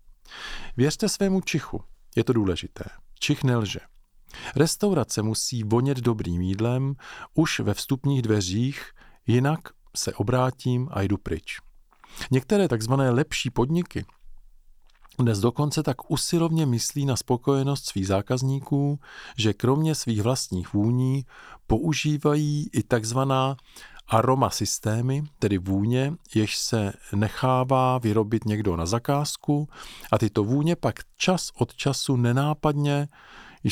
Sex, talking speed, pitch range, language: male, 110 wpm, 105-135 Hz, Czech